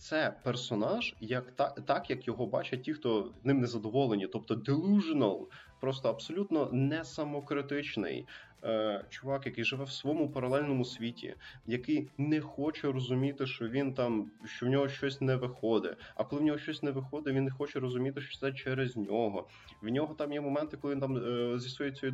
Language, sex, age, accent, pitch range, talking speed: Ukrainian, male, 20-39, native, 115-140 Hz, 180 wpm